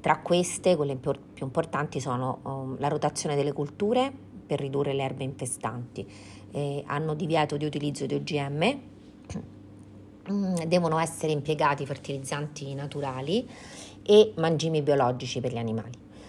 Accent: native